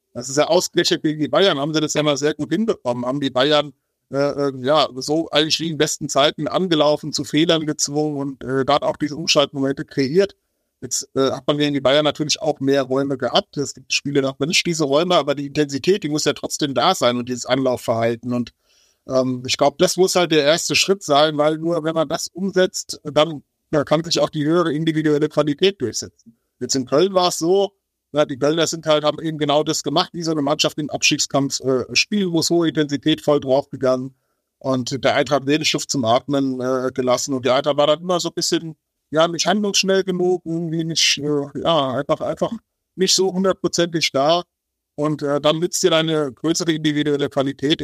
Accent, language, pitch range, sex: German, German, 140-165 Hz, male